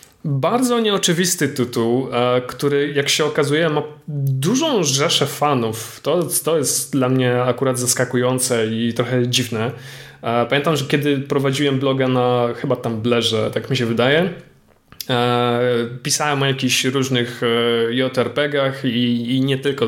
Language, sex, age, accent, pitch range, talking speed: Polish, male, 20-39, native, 125-150 Hz, 130 wpm